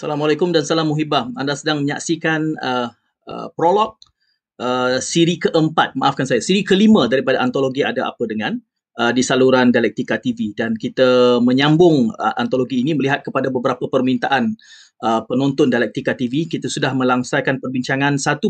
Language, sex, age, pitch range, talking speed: Malay, male, 30-49, 125-165 Hz, 150 wpm